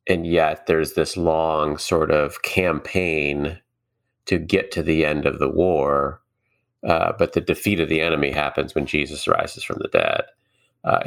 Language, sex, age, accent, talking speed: English, male, 30-49, American, 170 wpm